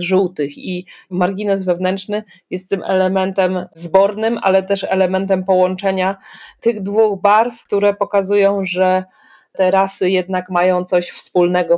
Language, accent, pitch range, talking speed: Polish, native, 175-215 Hz, 120 wpm